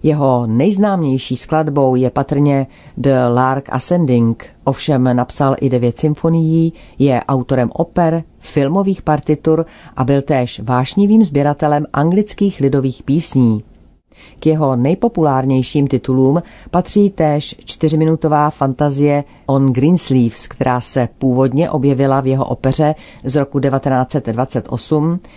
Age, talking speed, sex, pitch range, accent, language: 40-59, 110 wpm, female, 130-155 Hz, native, Czech